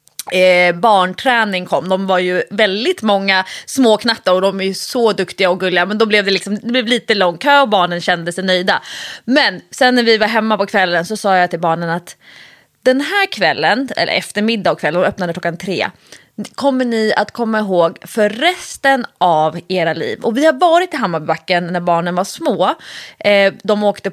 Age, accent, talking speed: 20-39, Swedish, 200 wpm